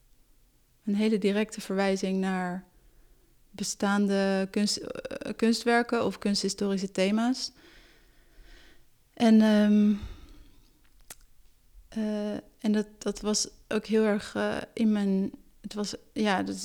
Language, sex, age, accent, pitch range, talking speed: Dutch, female, 30-49, Dutch, 195-225 Hz, 100 wpm